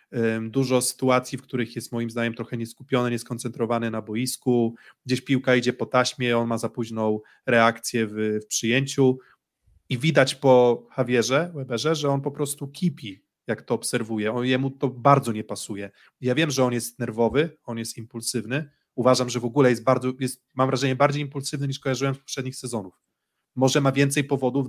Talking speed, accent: 175 wpm, native